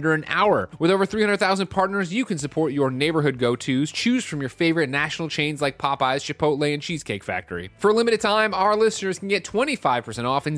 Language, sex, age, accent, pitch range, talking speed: English, male, 30-49, American, 135-200 Hz, 200 wpm